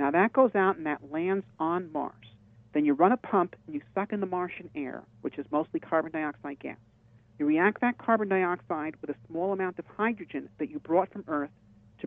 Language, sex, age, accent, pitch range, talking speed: English, male, 50-69, American, 150-210 Hz, 220 wpm